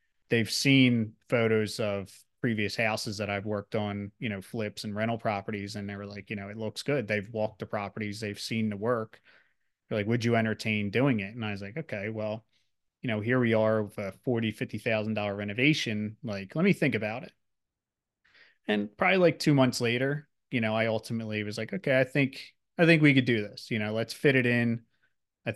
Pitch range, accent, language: 105-115 Hz, American, English